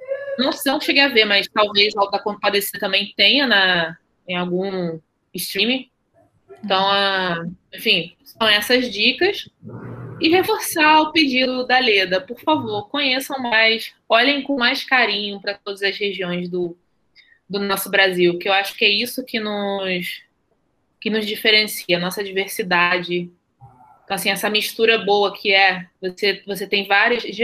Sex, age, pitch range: female, 20-39, 180-230 Hz